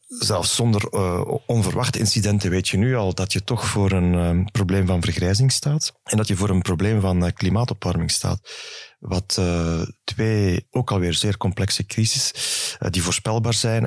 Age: 30-49